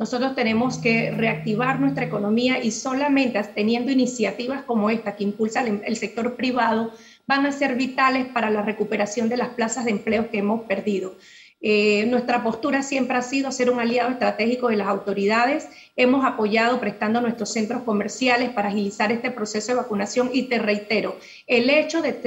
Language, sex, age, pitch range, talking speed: Spanish, female, 40-59, 215-250 Hz, 170 wpm